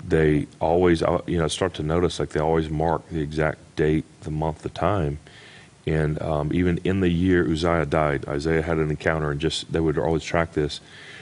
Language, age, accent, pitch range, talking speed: English, 40-59, American, 80-90 Hz, 200 wpm